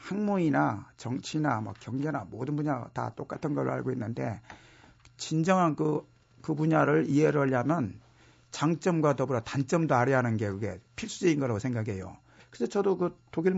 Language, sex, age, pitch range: Korean, male, 50-69, 115-150 Hz